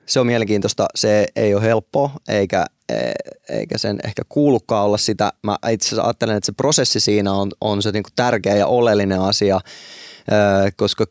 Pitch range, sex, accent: 100-120 Hz, male, native